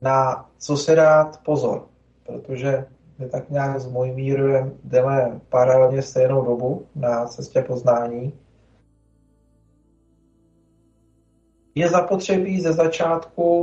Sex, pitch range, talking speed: male, 125-145 Hz, 100 wpm